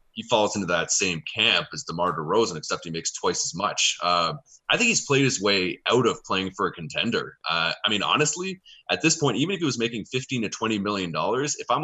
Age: 20-39